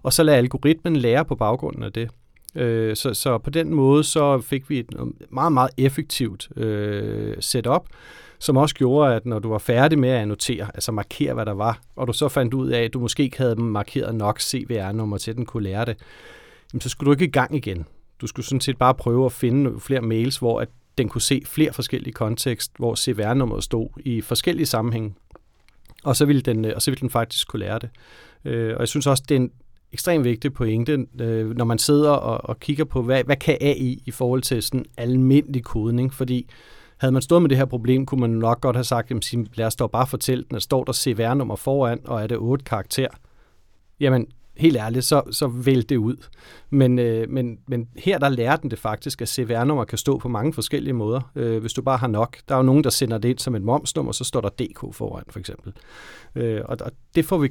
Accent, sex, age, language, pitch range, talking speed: native, male, 40-59, Danish, 115-140 Hz, 215 wpm